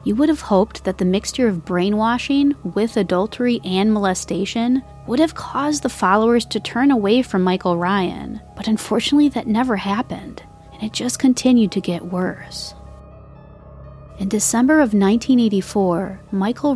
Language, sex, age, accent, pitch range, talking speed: English, female, 30-49, American, 185-245 Hz, 145 wpm